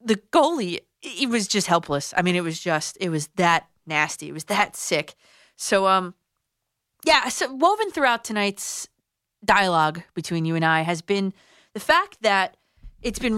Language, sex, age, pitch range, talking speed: English, female, 30-49, 160-225 Hz, 175 wpm